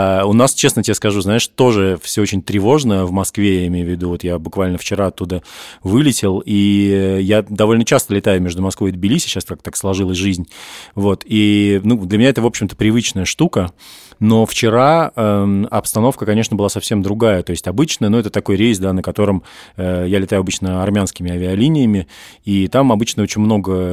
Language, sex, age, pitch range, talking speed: Russian, male, 20-39, 95-110 Hz, 185 wpm